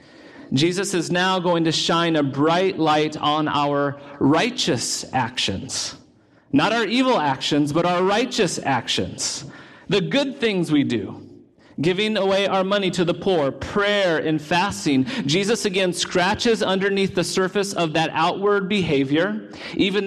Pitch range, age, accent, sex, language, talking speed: 155-200 Hz, 40-59, American, male, English, 140 wpm